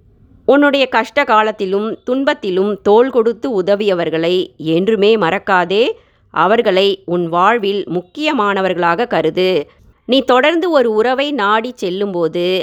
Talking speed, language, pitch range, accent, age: 95 wpm, Tamil, 175-235 Hz, native, 30-49